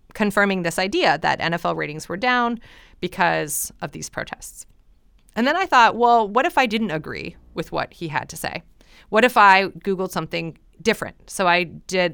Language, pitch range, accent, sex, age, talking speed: English, 165-215 Hz, American, female, 30-49, 185 wpm